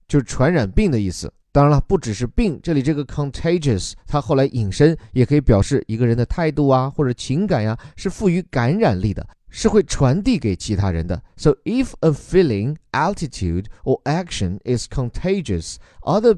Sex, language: male, Chinese